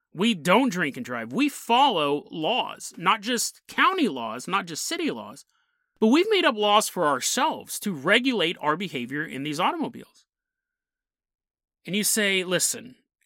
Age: 30-49